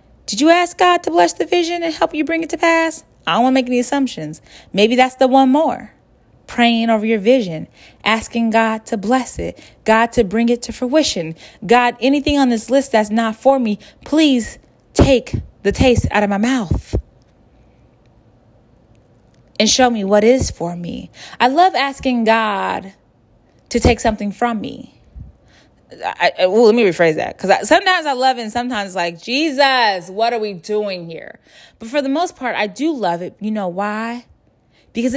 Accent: American